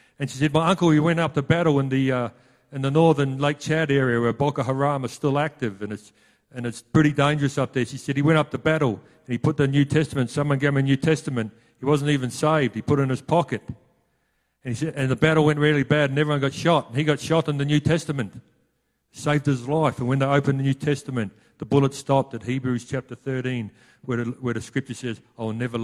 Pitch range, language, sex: 130-155 Hz, English, male